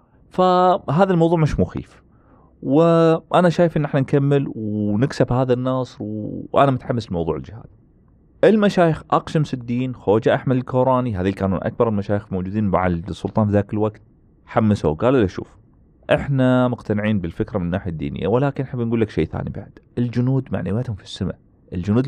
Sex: male